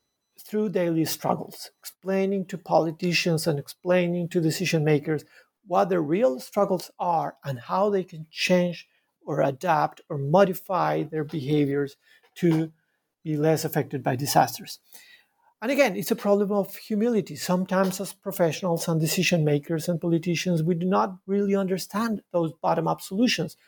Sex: male